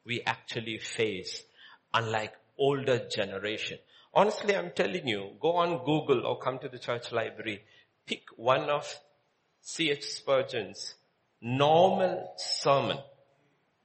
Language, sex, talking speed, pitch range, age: English, male, 115 wpm, 135-220 Hz, 50-69